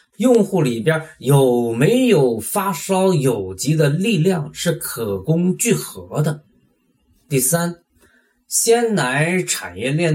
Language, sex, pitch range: Chinese, male, 125-190 Hz